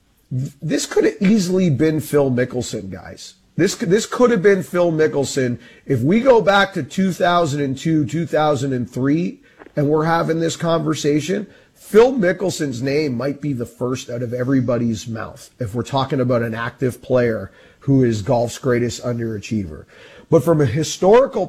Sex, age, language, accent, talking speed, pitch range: male, 40-59, English, American, 170 wpm, 125-175 Hz